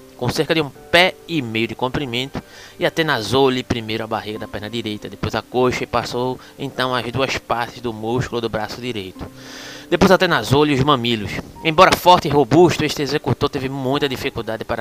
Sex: male